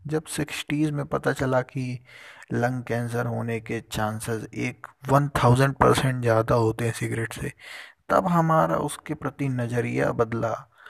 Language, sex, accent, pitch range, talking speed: Hindi, male, native, 115-145 Hz, 145 wpm